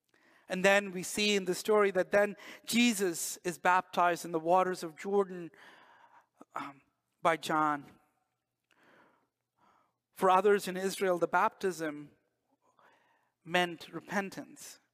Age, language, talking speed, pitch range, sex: 50-69, English, 115 wpm, 175-225 Hz, male